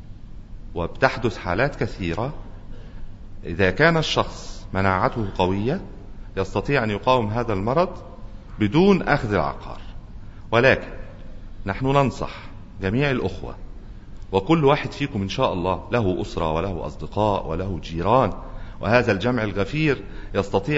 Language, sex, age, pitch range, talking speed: Arabic, male, 40-59, 95-125 Hz, 105 wpm